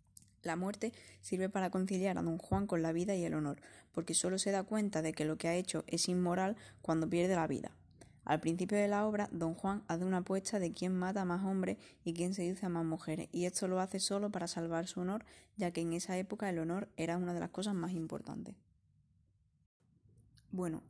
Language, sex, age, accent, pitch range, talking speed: Spanish, female, 20-39, Spanish, 170-195 Hz, 220 wpm